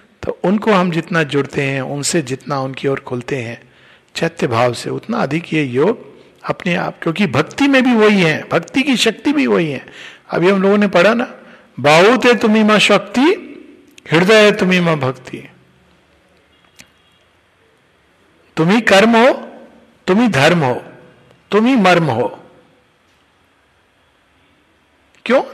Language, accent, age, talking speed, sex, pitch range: Hindi, native, 60-79, 140 wpm, male, 155-225 Hz